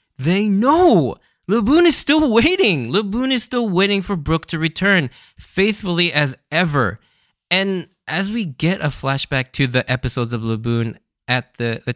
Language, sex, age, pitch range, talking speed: English, male, 10-29, 105-155 Hz, 155 wpm